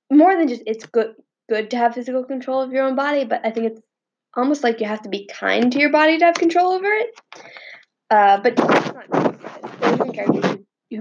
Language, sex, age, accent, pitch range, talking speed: English, female, 10-29, American, 215-310 Hz, 195 wpm